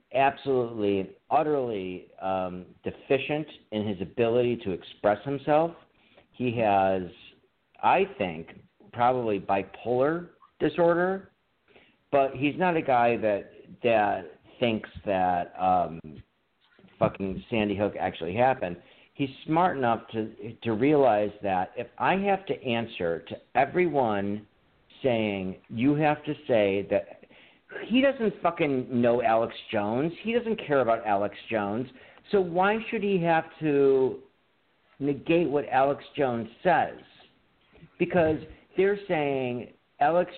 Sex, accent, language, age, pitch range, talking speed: male, American, English, 50-69, 105-160 Hz, 115 wpm